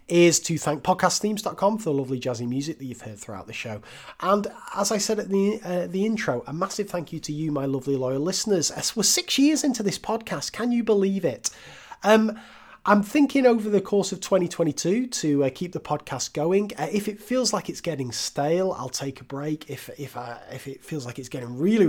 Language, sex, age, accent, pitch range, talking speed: English, male, 30-49, British, 120-180 Hz, 220 wpm